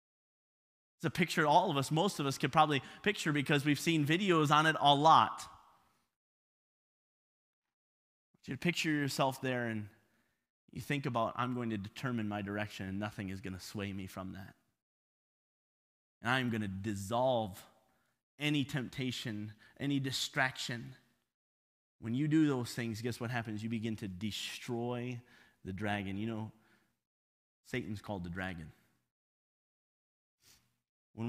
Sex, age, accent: male, 20-39, American